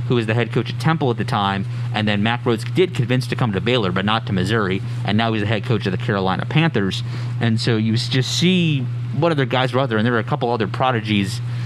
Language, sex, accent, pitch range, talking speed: English, male, American, 110-125 Hz, 270 wpm